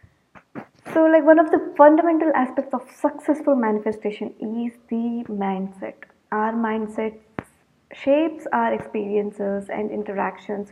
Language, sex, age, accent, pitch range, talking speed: English, female, 20-39, Indian, 220-275 Hz, 110 wpm